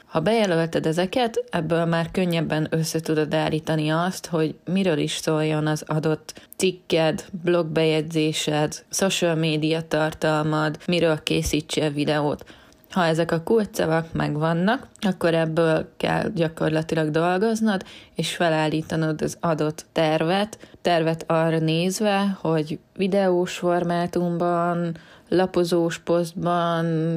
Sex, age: female, 20-39